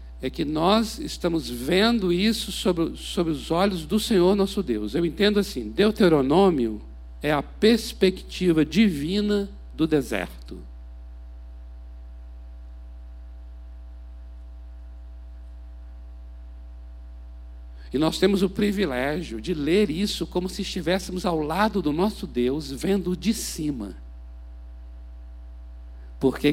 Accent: Brazilian